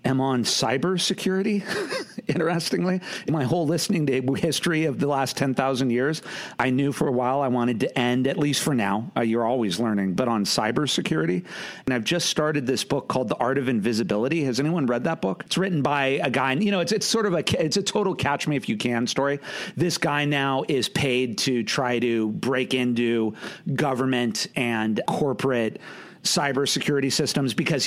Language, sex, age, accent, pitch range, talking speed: English, male, 40-59, American, 125-175 Hz, 190 wpm